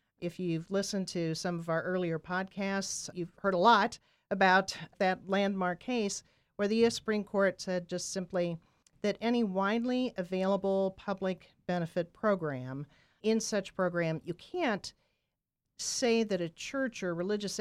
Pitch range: 150-190 Hz